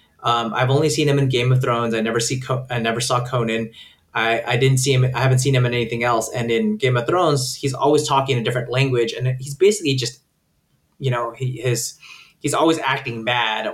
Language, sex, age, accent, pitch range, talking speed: English, male, 20-39, American, 115-135 Hz, 225 wpm